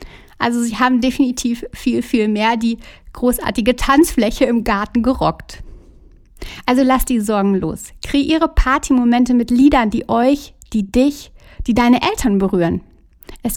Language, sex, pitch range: German, female, 200-255 Hz